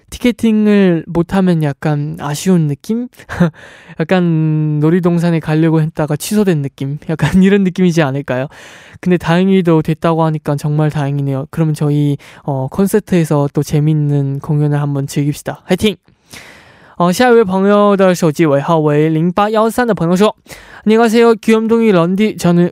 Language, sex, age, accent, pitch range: Korean, male, 20-39, native, 150-195 Hz